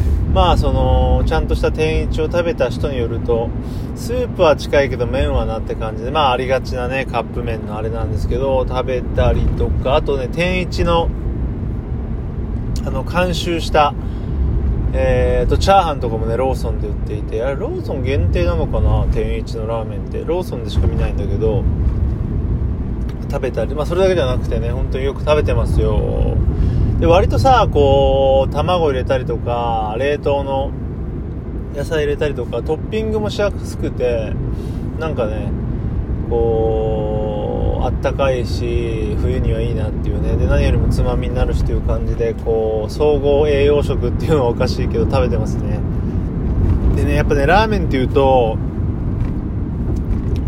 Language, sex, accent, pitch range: Japanese, male, native, 90-120 Hz